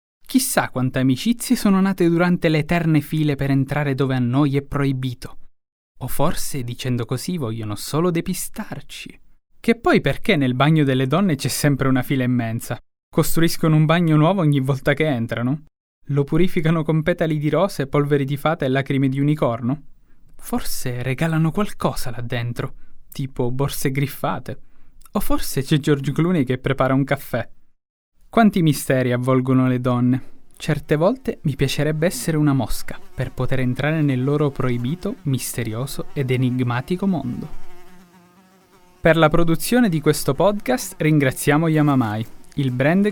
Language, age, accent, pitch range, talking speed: Italian, 20-39, native, 130-170 Hz, 145 wpm